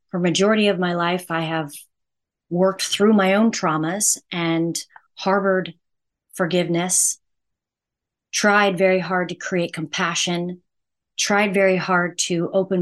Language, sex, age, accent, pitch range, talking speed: English, female, 30-49, American, 165-200 Hz, 115 wpm